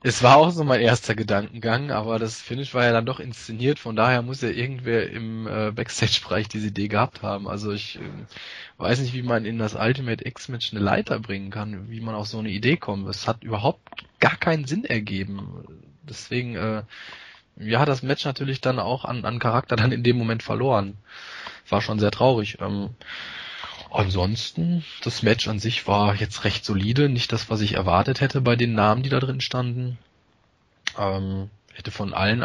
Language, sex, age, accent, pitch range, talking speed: German, male, 20-39, German, 100-115 Hz, 190 wpm